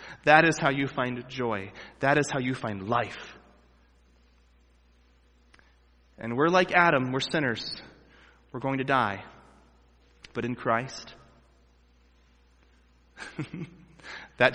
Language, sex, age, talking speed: English, male, 20-39, 105 wpm